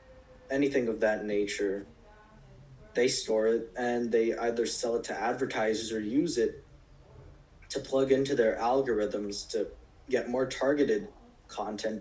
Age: 20-39